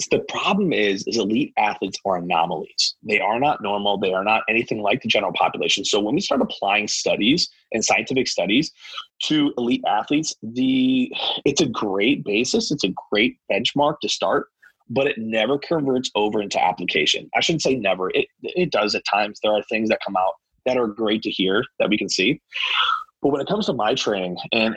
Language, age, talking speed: English, 30-49, 200 wpm